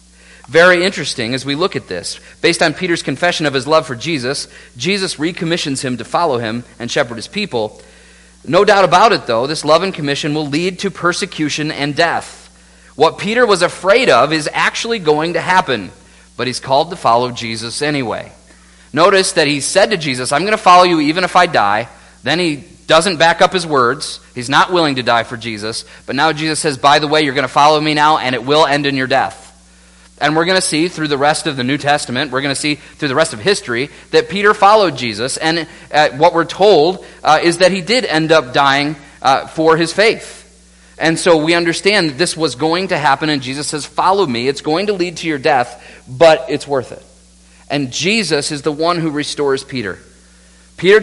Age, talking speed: 40-59, 215 wpm